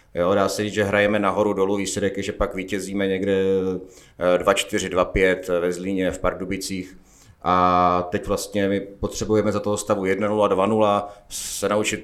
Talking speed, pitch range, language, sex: 155 wpm, 95-110 Hz, Czech, male